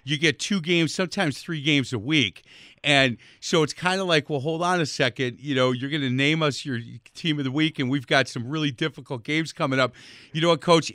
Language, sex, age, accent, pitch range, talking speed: English, male, 50-69, American, 130-160 Hz, 245 wpm